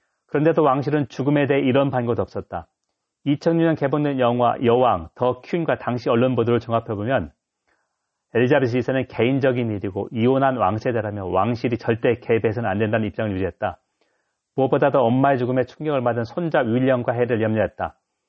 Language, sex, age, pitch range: Korean, male, 40-59, 110-140 Hz